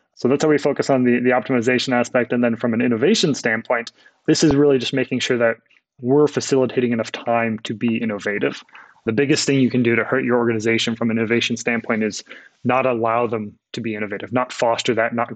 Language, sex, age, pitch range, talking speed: English, male, 20-39, 115-130 Hz, 215 wpm